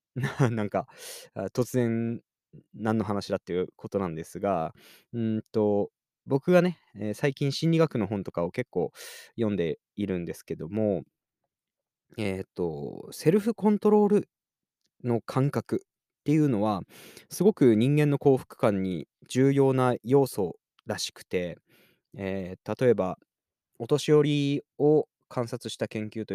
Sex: male